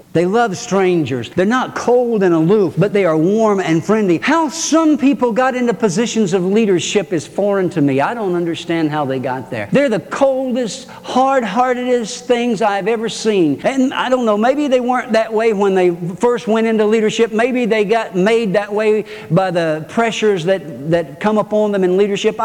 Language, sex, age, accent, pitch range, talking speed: English, male, 50-69, American, 180-245 Hz, 190 wpm